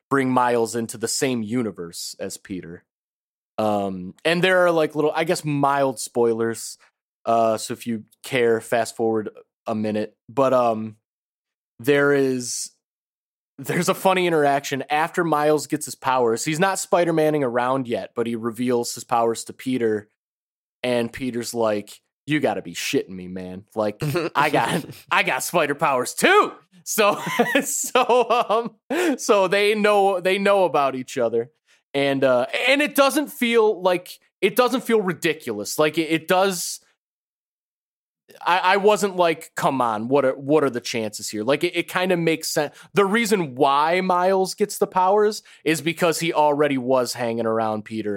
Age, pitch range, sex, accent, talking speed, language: 30-49, 115-185 Hz, male, American, 165 wpm, English